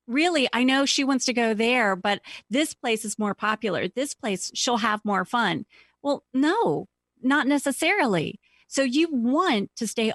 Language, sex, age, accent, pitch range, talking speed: English, female, 40-59, American, 195-235 Hz, 170 wpm